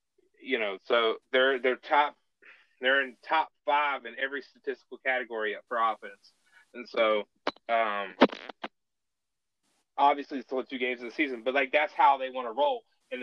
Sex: male